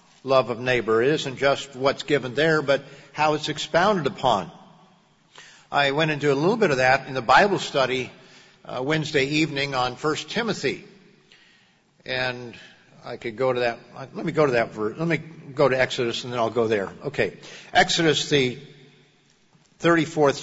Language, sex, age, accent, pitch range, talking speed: English, male, 50-69, American, 135-175 Hz, 170 wpm